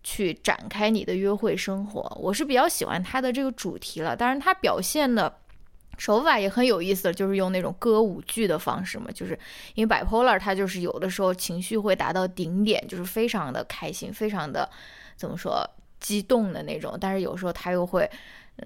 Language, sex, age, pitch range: Chinese, female, 20-39, 190-245 Hz